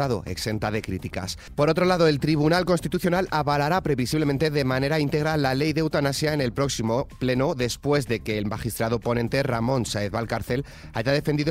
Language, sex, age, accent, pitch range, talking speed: Spanish, male, 30-49, Spanish, 115-150 Hz, 170 wpm